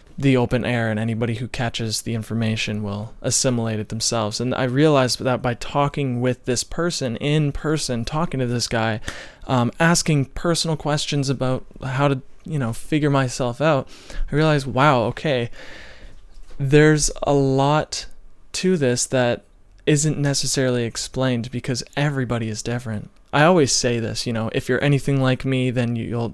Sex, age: male, 20-39